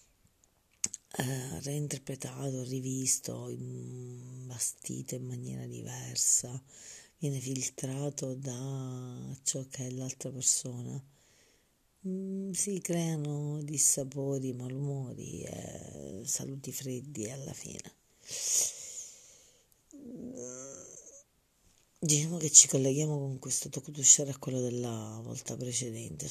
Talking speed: 85 wpm